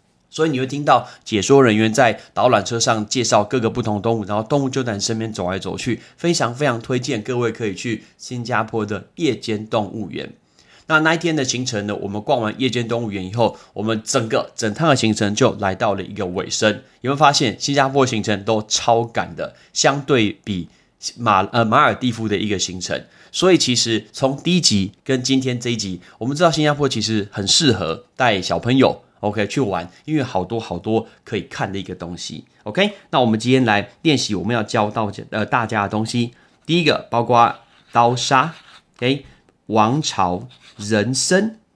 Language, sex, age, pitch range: Chinese, male, 30-49, 105-135 Hz